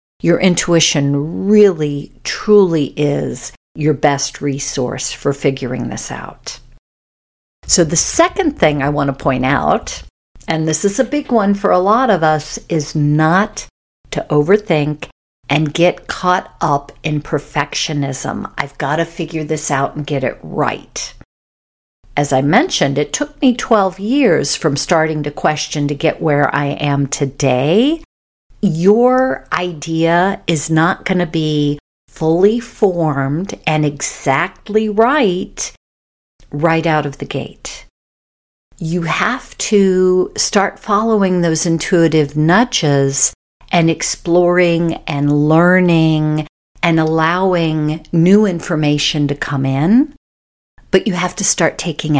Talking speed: 130 wpm